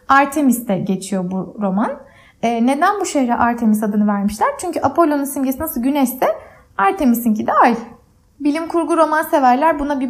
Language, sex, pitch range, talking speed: Turkish, female, 235-310 Hz, 150 wpm